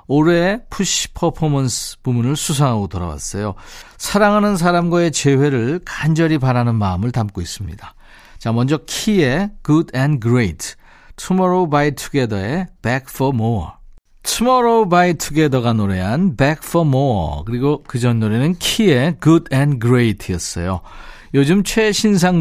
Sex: male